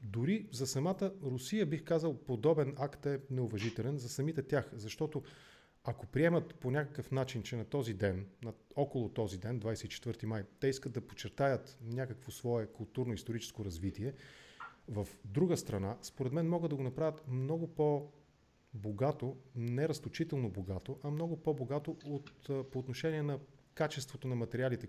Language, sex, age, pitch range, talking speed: English, male, 40-59, 110-145 Hz, 145 wpm